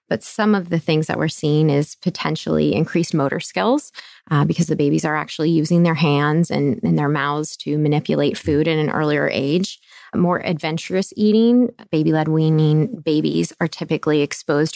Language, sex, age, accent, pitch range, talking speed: English, female, 20-39, American, 155-200 Hz, 170 wpm